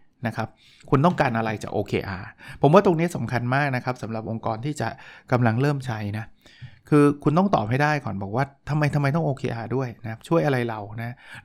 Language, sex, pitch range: Thai, male, 120-150 Hz